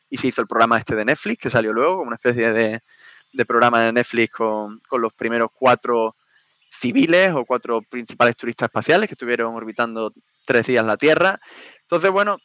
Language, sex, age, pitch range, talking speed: Spanish, male, 20-39, 115-145 Hz, 190 wpm